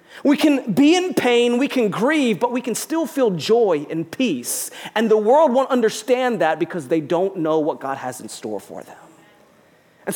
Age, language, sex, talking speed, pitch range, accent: 40-59, English, male, 200 wpm, 225-300 Hz, American